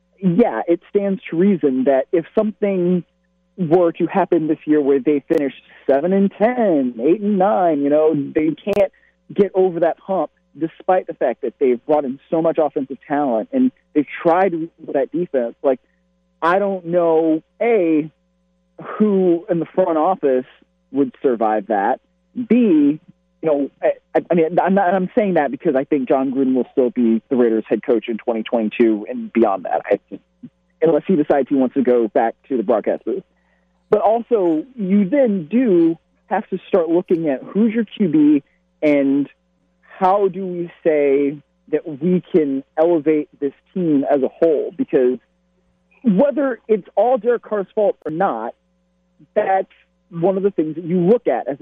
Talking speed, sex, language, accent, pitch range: 170 wpm, male, English, American, 145-195 Hz